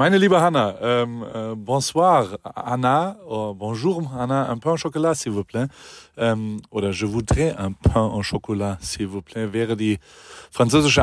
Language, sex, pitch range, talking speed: German, male, 110-140 Hz, 170 wpm